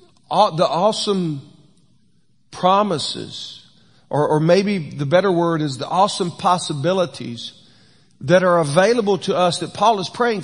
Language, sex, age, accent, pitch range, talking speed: English, male, 50-69, American, 140-180 Hz, 125 wpm